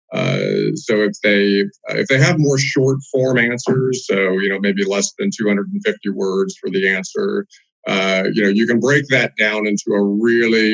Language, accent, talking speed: English, American, 185 wpm